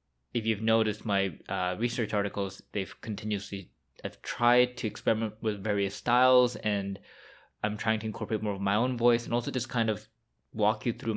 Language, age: English, 20-39